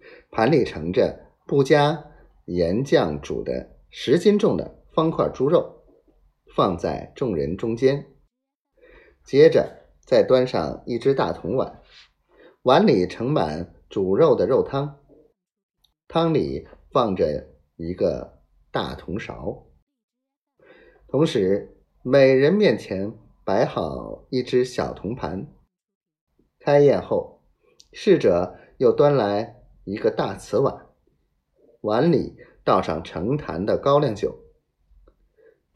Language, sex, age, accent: Chinese, male, 30-49, native